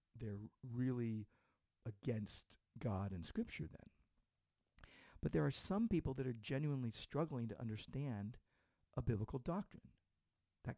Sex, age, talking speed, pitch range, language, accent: male, 50-69, 120 wpm, 120-180 Hz, English, American